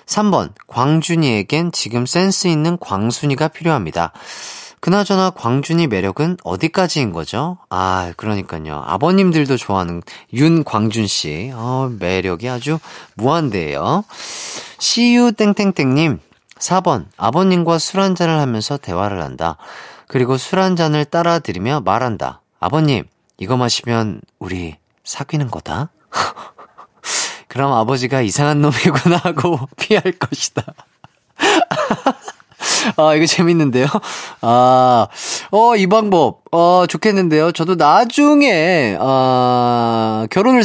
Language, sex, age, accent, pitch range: Korean, male, 30-49, native, 110-175 Hz